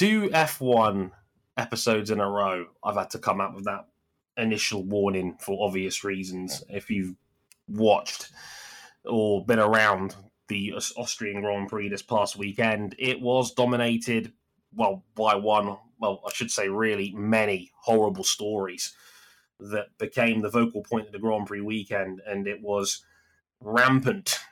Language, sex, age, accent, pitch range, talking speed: English, male, 20-39, British, 100-115 Hz, 145 wpm